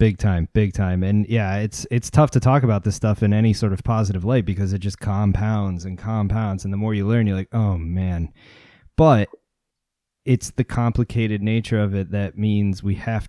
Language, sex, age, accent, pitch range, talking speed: English, male, 20-39, American, 105-130 Hz, 210 wpm